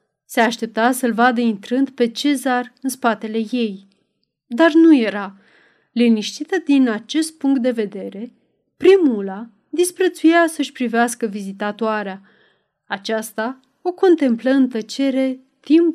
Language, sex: Romanian, female